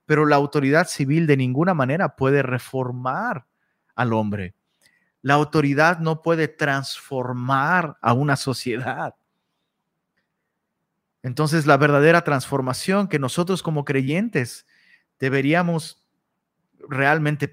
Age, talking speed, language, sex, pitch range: 30-49, 100 wpm, Spanish, male, 135-180 Hz